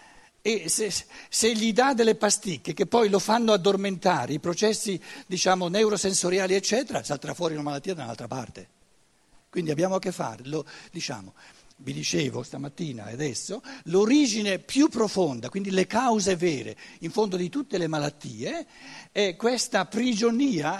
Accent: native